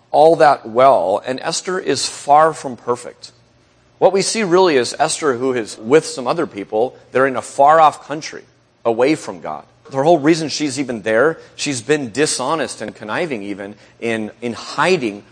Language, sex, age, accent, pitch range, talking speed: English, male, 30-49, American, 120-155 Hz, 175 wpm